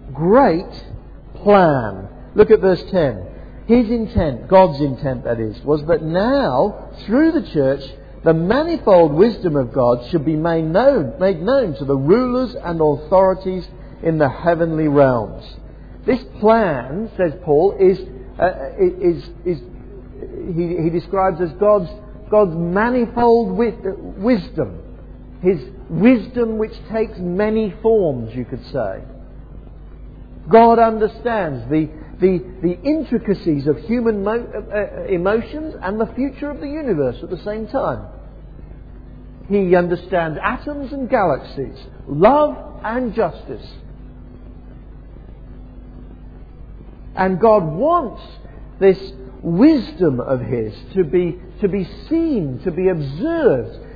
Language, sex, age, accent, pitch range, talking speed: English, male, 50-69, British, 155-230 Hz, 120 wpm